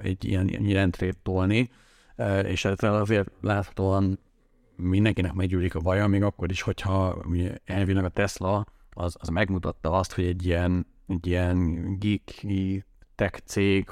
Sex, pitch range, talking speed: male, 90-100 Hz, 125 wpm